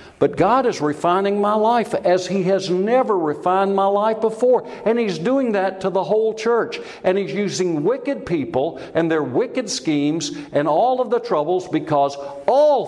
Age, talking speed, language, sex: 60-79, 175 wpm, English, male